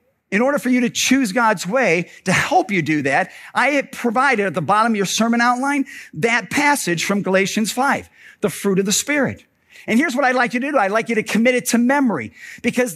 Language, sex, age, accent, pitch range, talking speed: English, male, 50-69, American, 170-250 Hz, 230 wpm